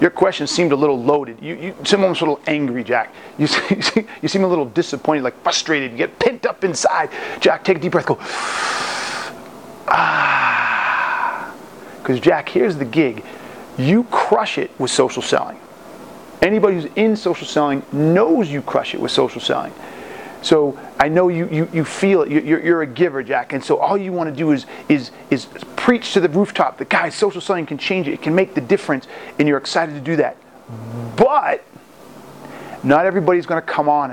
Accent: American